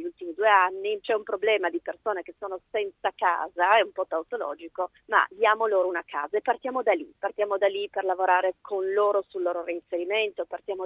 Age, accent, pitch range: 30-49, native, 175-215 Hz